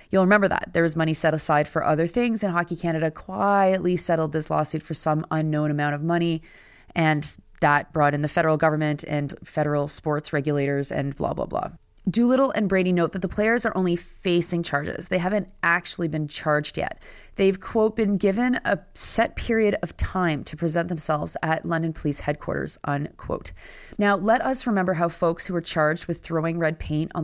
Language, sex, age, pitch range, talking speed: English, female, 30-49, 160-190 Hz, 190 wpm